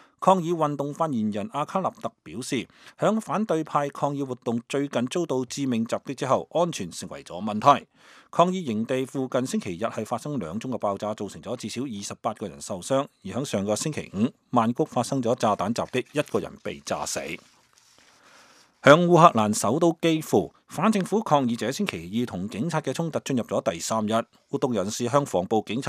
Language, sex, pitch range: English, male, 110-160 Hz